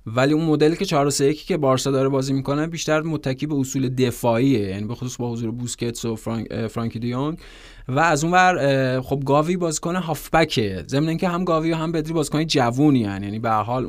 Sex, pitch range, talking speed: male, 130-155 Hz, 190 wpm